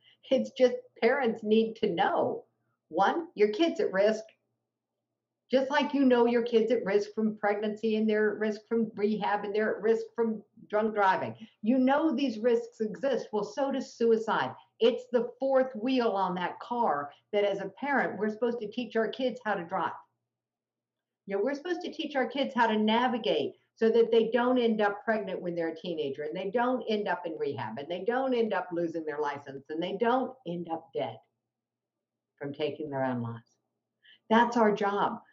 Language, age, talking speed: English, 50-69, 195 wpm